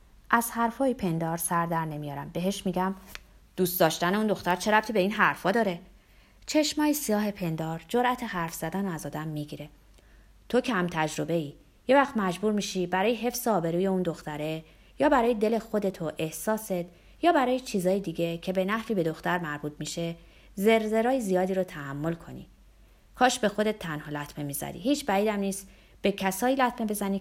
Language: Persian